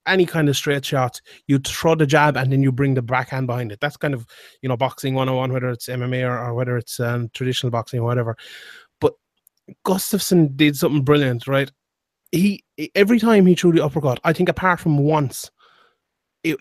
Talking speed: 205 wpm